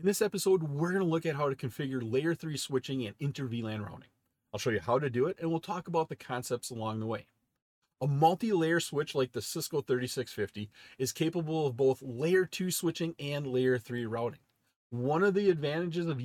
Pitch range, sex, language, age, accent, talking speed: 130-175 Hz, male, English, 40-59, American, 205 wpm